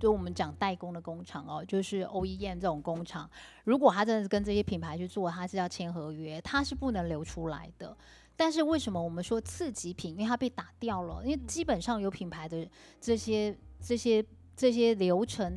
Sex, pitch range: female, 175-225 Hz